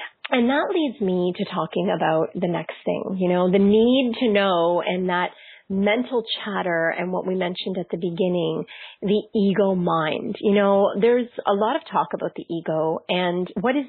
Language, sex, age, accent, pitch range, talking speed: English, female, 30-49, American, 180-235 Hz, 185 wpm